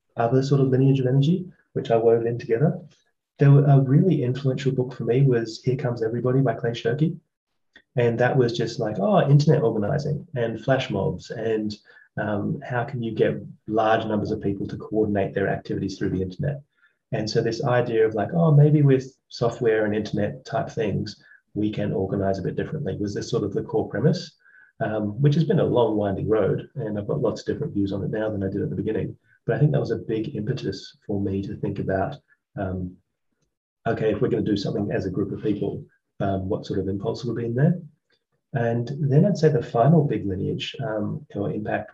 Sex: male